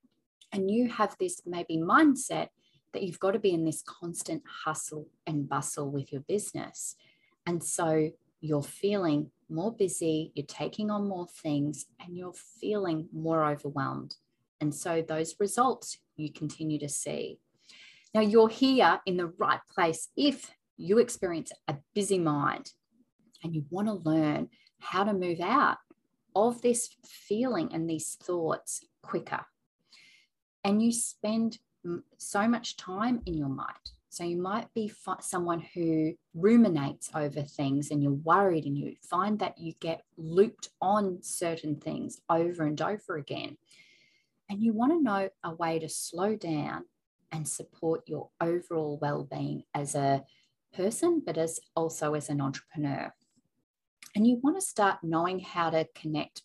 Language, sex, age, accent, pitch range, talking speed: English, female, 30-49, Australian, 155-210 Hz, 150 wpm